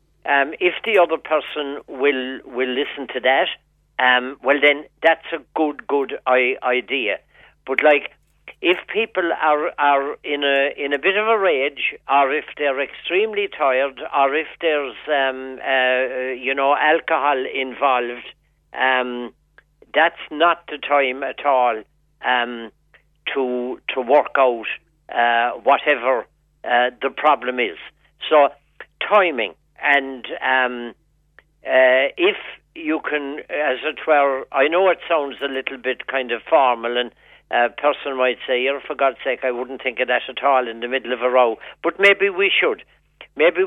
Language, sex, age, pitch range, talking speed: English, male, 60-79, 130-155 Hz, 155 wpm